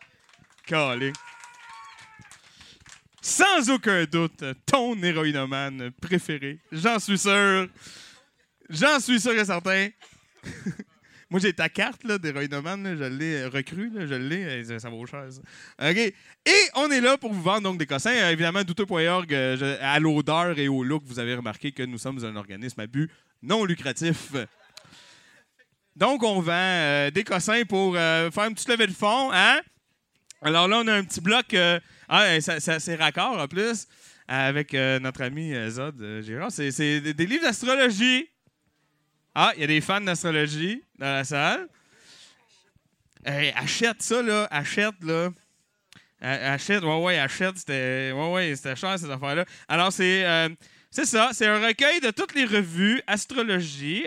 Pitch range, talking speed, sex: 140-205 Hz, 155 wpm, male